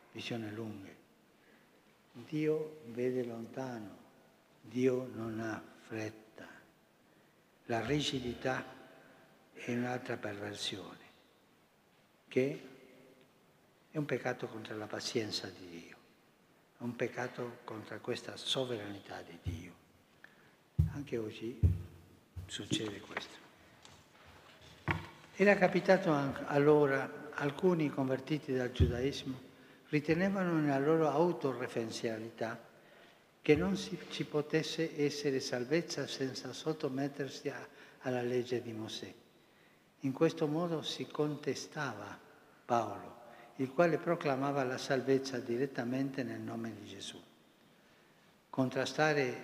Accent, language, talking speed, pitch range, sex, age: native, Italian, 90 wpm, 115-145 Hz, male, 60-79